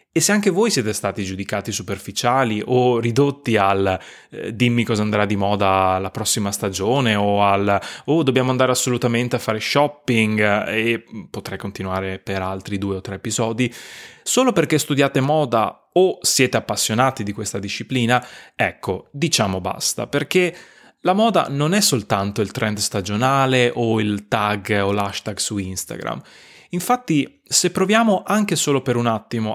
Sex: male